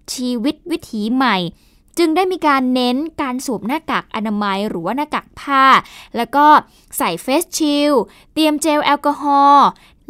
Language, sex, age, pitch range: Thai, female, 10-29, 230-290 Hz